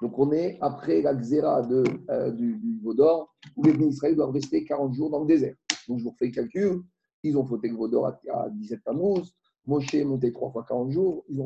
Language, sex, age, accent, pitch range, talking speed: French, male, 50-69, French, 140-195 Hz, 230 wpm